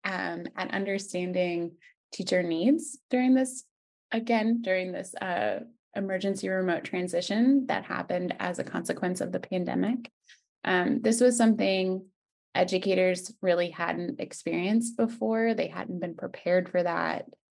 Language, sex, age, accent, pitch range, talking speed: English, female, 20-39, American, 180-235 Hz, 125 wpm